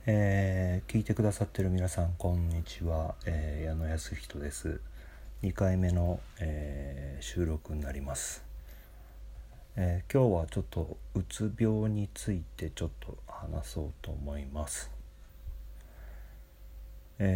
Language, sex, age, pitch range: Japanese, male, 40-59, 70-90 Hz